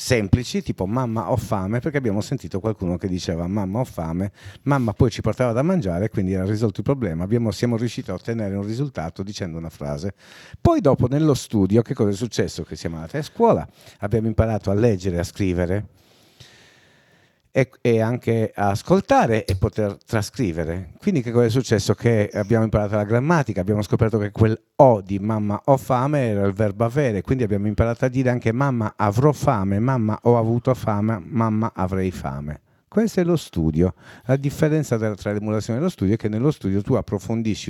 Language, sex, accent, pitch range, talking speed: Italian, male, native, 100-125 Hz, 190 wpm